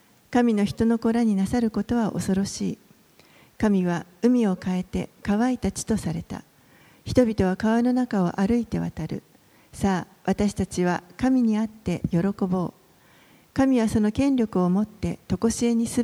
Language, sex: Japanese, female